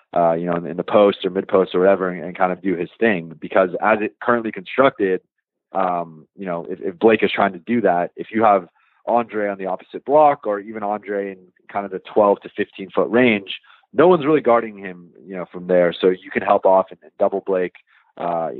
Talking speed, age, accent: 240 wpm, 30-49, American